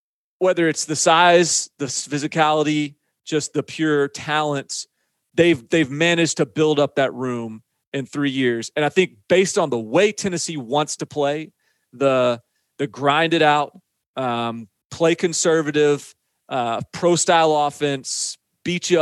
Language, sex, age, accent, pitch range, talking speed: English, male, 30-49, American, 140-165 Hz, 140 wpm